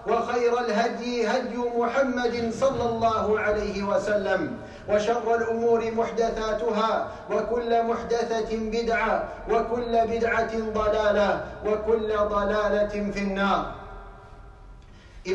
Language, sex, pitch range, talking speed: English, male, 225-245 Hz, 80 wpm